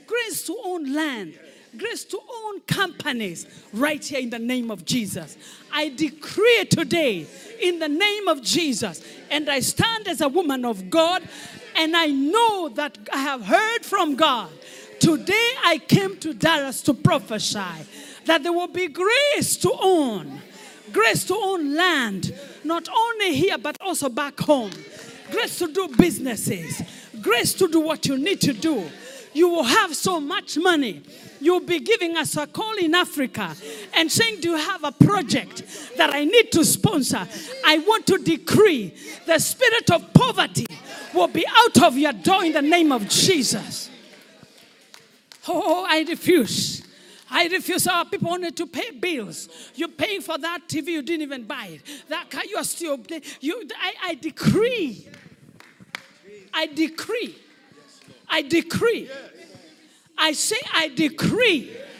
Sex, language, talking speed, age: female, English, 155 wpm, 40-59